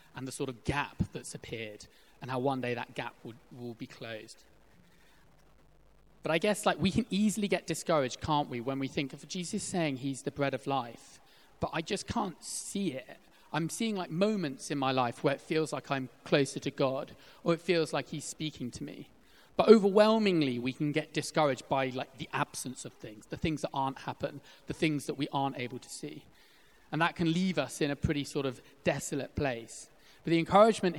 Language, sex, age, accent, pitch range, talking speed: English, male, 30-49, British, 130-160 Hz, 210 wpm